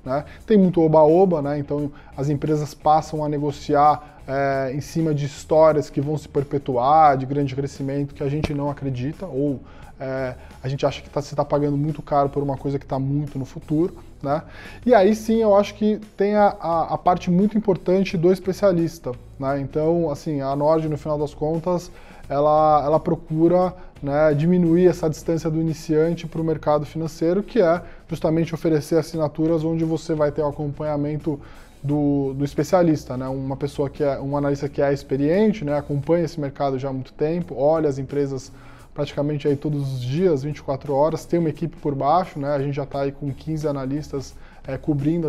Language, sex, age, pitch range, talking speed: English, male, 20-39, 140-165 Hz, 190 wpm